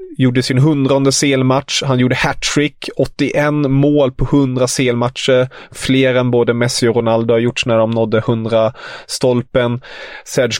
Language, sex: English, male